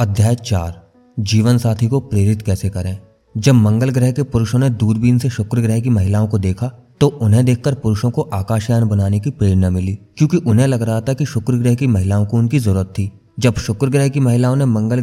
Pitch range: 110-140 Hz